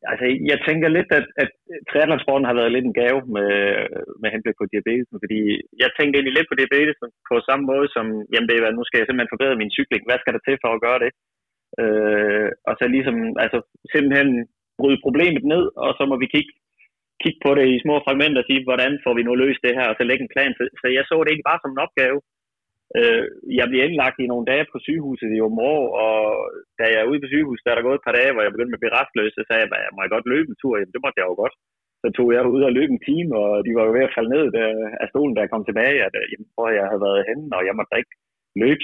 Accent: native